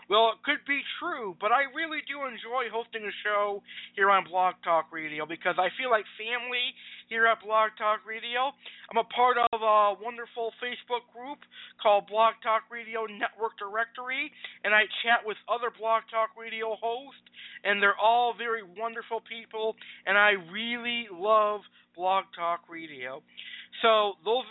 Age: 50-69